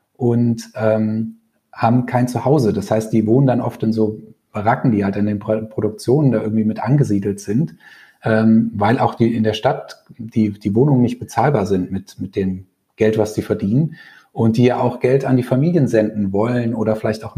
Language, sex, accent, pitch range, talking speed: German, male, German, 105-125 Hz, 200 wpm